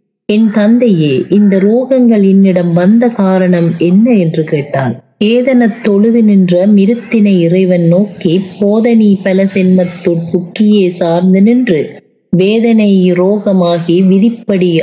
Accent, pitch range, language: native, 180-220 Hz, Tamil